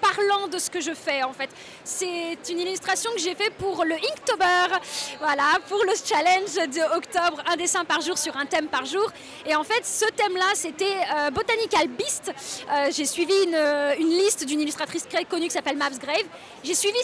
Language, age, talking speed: French, 20-39, 205 wpm